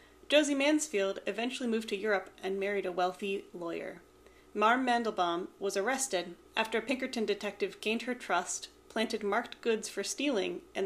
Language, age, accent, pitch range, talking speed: English, 30-49, American, 195-265 Hz, 155 wpm